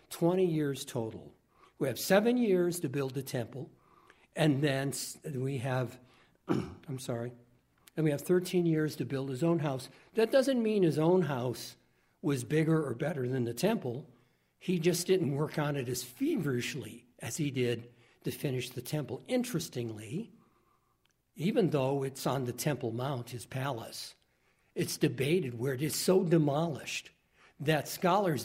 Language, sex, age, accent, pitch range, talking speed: English, male, 60-79, American, 125-165 Hz, 155 wpm